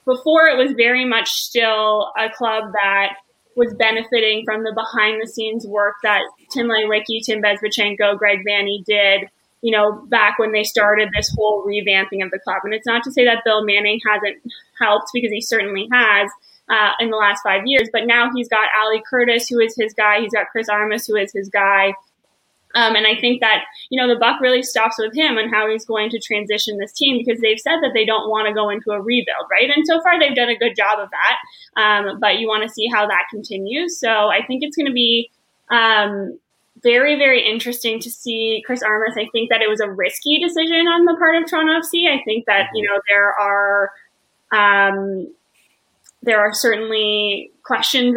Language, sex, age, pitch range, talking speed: English, female, 20-39, 210-235 Hz, 210 wpm